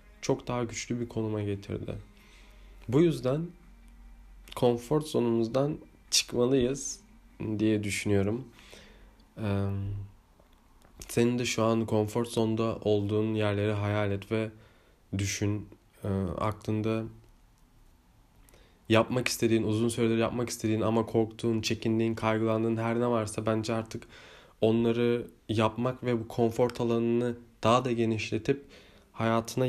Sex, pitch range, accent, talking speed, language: male, 105-120 Hz, native, 105 wpm, Turkish